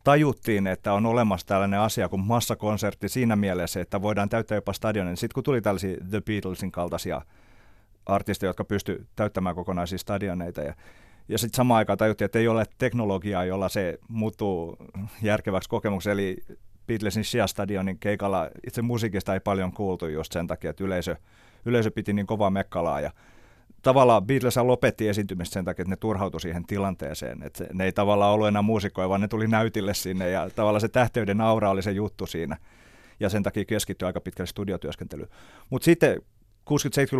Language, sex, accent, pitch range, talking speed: Finnish, male, native, 95-115 Hz, 165 wpm